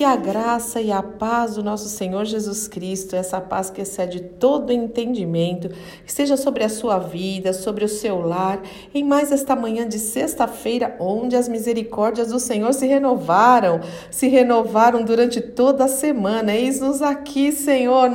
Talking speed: 160 wpm